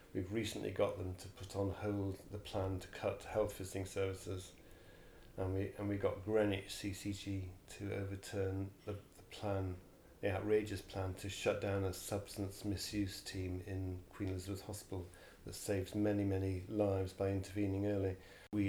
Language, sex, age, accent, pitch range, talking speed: English, male, 40-59, British, 95-105 Hz, 160 wpm